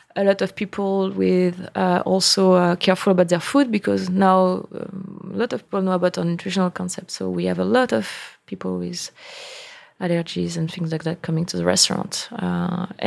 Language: English